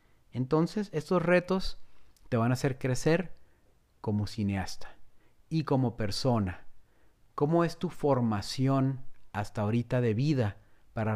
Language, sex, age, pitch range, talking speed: Spanish, male, 40-59, 105-135 Hz, 120 wpm